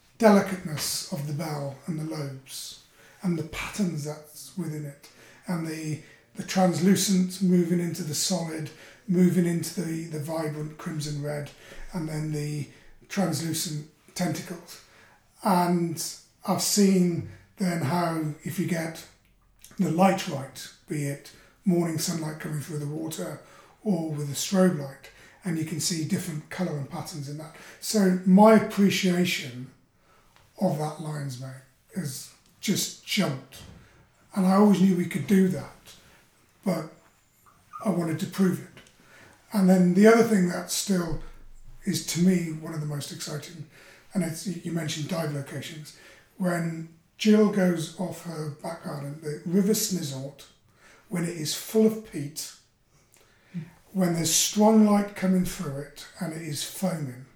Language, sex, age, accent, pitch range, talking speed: English, male, 30-49, British, 150-185 Hz, 145 wpm